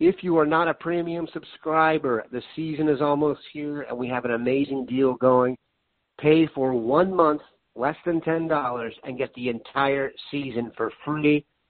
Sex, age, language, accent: male, 50-69, English, American